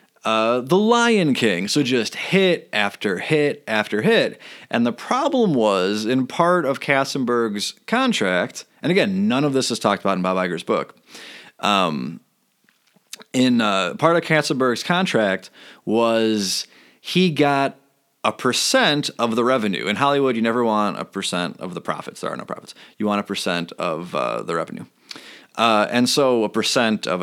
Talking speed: 165 wpm